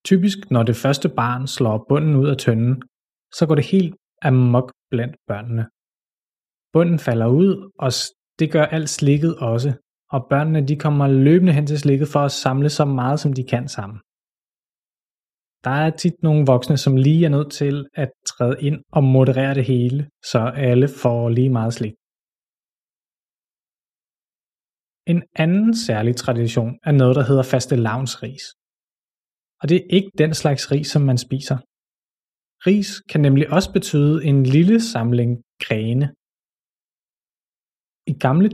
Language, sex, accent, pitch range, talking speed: Danish, male, native, 125-155 Hz, 150 wpm